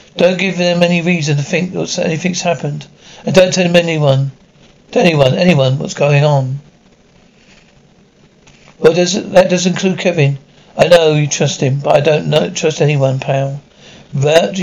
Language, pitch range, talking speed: English, 150-180 Hz, 165 wpm